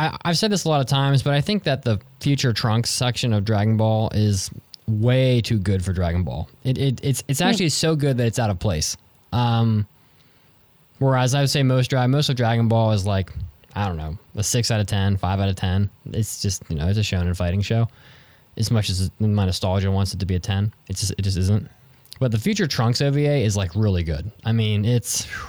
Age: 20-39